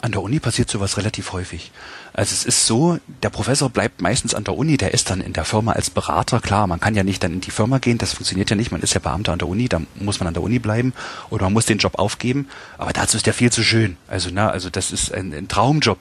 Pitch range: 100-130 Hz